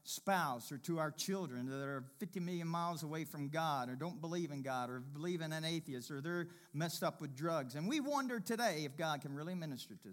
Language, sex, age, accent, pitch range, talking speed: English, male, 50-69, American, 150-230 Hz, 230 wpm